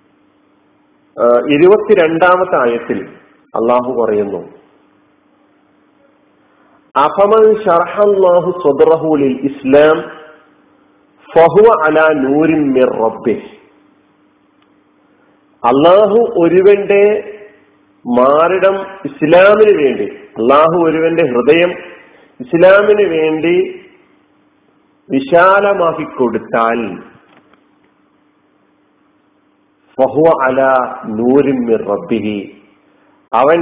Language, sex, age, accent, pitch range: Malayalam, male, 50-69, native, 130-200 Hz